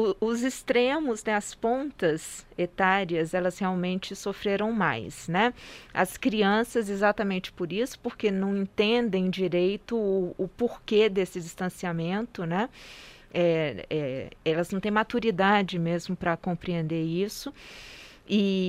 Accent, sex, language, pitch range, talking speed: Brazilian, female, Portuguese, 180-230 Hz, 110 wpm